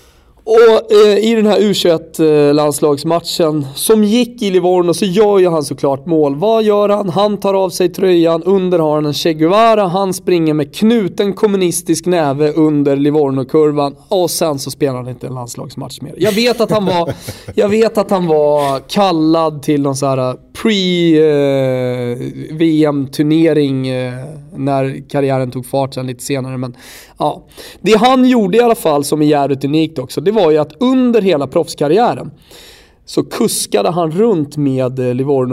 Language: Swedish